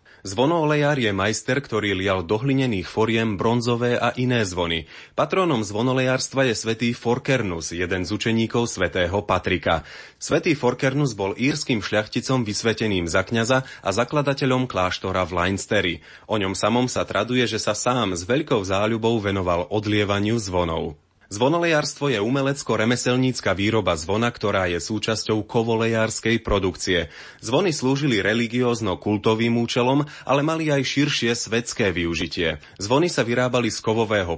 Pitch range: 100-125 Hz